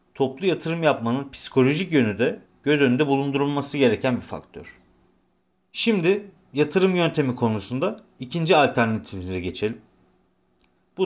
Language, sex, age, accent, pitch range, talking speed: Turkish, male, 40-59, native, 120-160 Hz, 110 wpm